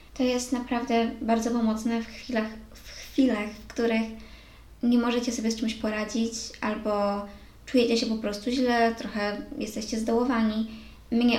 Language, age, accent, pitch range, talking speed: Polish, 20-39, native, 205-240 Hz, 140 wpm